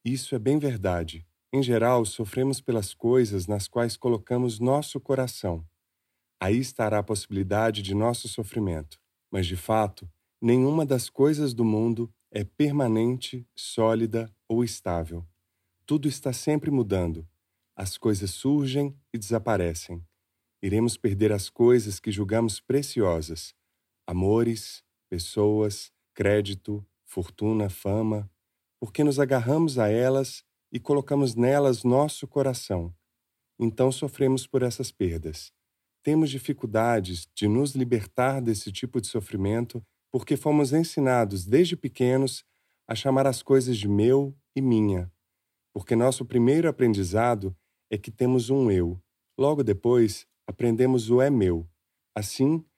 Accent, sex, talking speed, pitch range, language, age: Brazilian, male, 125 wpm, 95-130 Hz, Portuguese, 30-49